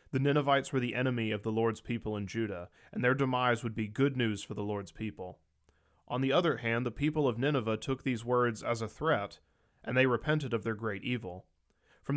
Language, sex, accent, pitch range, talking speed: English, male, American, 110-140 Hz, 215 wpm